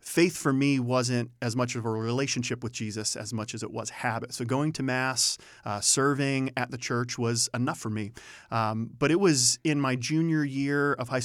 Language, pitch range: English, 120-140 Hz